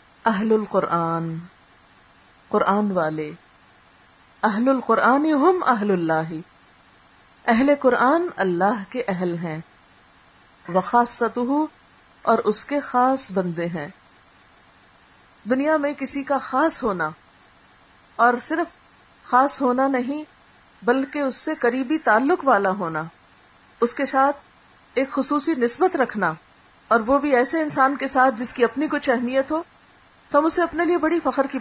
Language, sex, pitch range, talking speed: Urdu, female, 210-280 Hz, 125 wpm